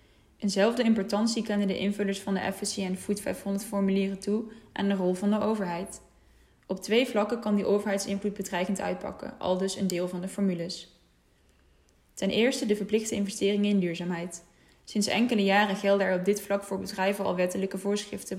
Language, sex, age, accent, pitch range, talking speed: Dutch, female, 10-29, Dutch, 190-210 Hz, 180 wpm